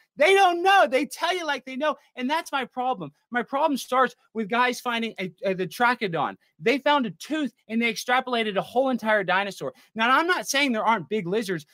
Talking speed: 215 wpm